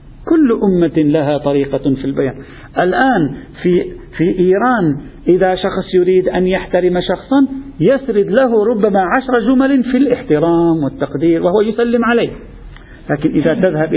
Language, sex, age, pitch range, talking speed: Arabic, male, 50-69, 160-230 Hz, 130 wpm